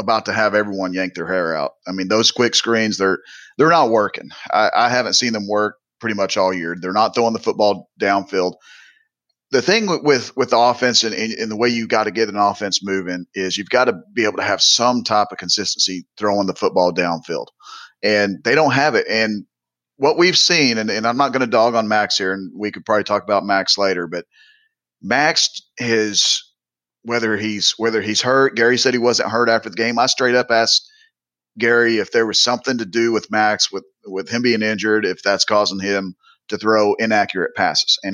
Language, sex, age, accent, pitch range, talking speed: English, male, 30-49, American, 100-115 Hz, 215 wpm